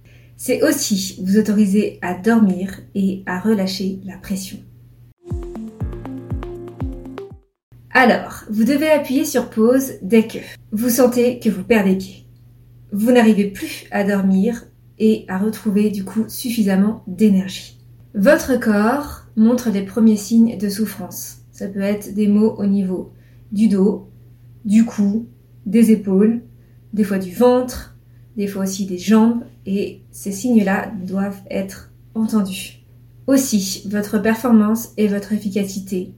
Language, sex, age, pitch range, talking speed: French, female, 30-49, 185-225 Hz, 130 wpm